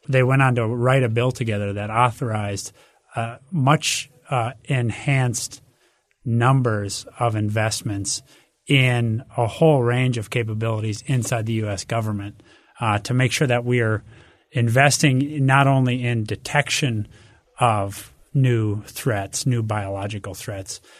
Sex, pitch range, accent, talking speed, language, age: male, 110-130 Hz, American, 130 wpm, English, 30-49